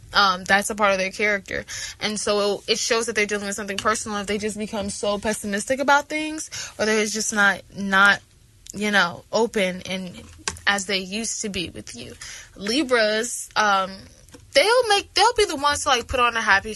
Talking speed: 200 wpm